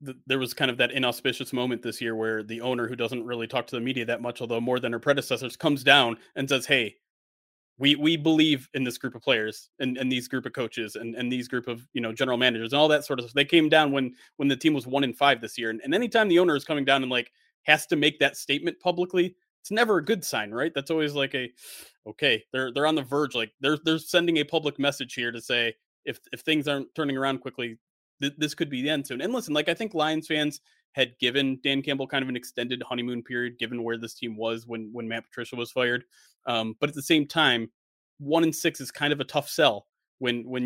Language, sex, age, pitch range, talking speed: English, male, 30-49, 120-145 Hz, 255 wpm